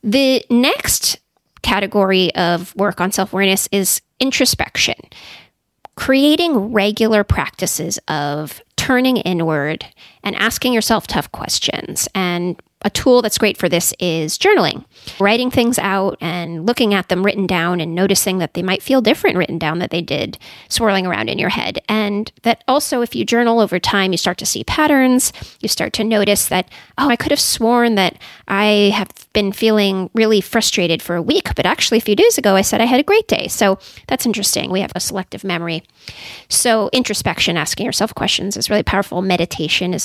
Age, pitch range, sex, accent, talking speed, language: 30-49, 185-240 Hz, female, American, 180 wpm, English